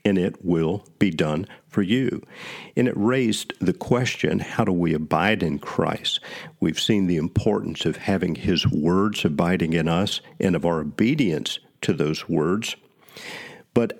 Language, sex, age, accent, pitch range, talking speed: English, male, 50-69, American, 85-120 Hz, 160 wpm